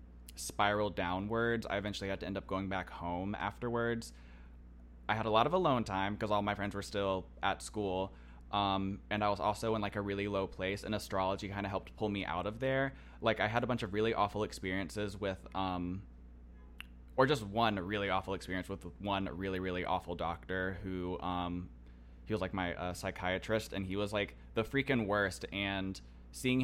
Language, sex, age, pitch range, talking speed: English, male, 20-39, 90-105 Hz, 200 wpm